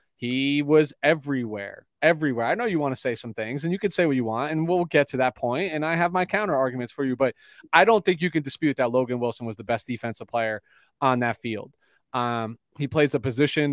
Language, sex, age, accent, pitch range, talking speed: English, male, 30-49, American, 115-150 Hz, 245 wpm